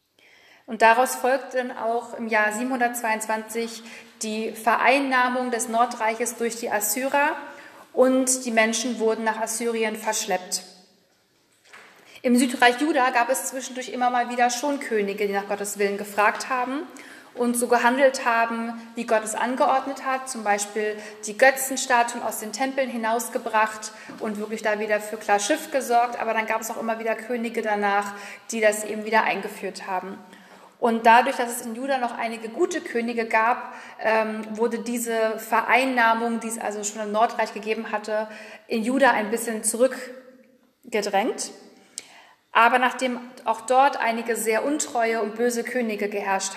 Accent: German